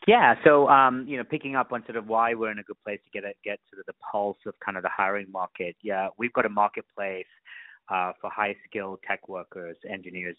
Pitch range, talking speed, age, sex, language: 95-105 Hz, 235 wpm, 30-49, male, English